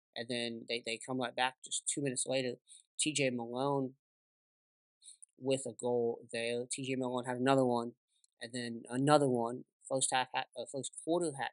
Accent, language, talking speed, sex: American, English, 170 wpm, male